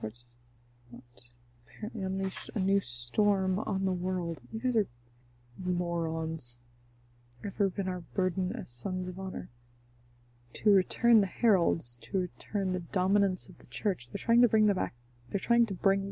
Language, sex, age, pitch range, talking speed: English, female, 20-39, 120-190 Hz, 155 wpm